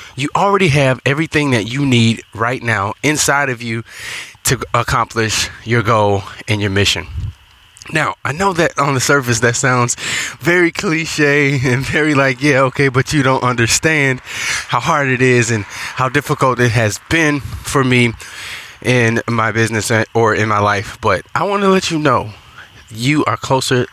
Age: 20-39